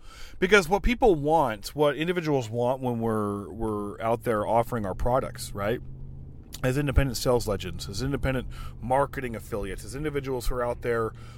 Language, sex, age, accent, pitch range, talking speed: English, male, 30-49, American, 110-155 Hz, 160 wpm